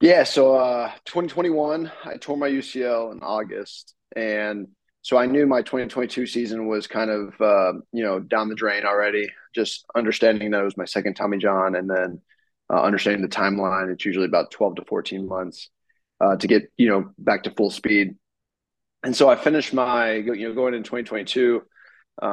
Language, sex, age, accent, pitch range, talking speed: English, male, 20-39, American, 105-125 Hz, 185 wpm